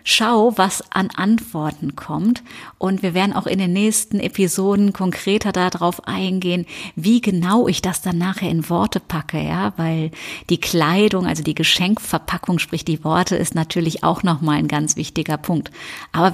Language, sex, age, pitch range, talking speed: German, female, 30-49, 165-205 Hz, 165 wpm